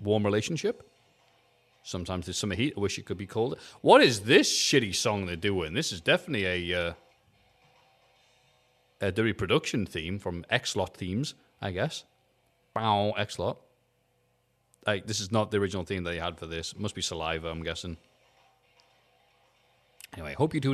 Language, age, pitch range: English, 30-49, 90-145 Hz